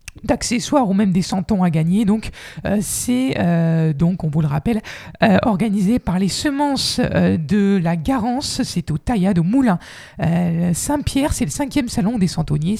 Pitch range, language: 165-225 Hz, French